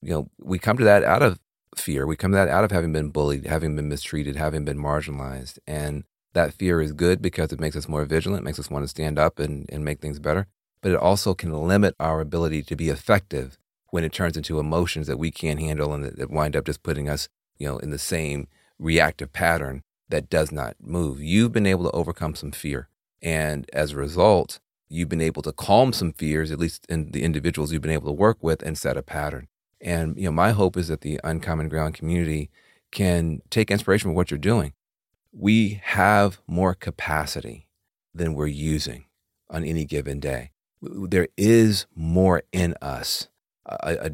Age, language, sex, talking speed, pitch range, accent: 40-59, English, male, 205 wpm, 75-90 Hz, American